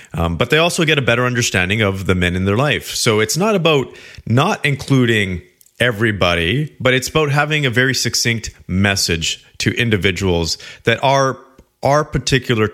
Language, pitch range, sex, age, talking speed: English, 95-130 Hz, male, 30-49, 165 wpm